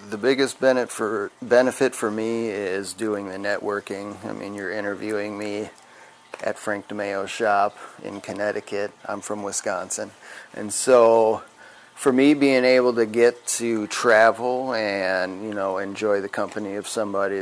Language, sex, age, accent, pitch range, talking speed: English, male, 30-49, American, 100-120 Hz, 140 wpm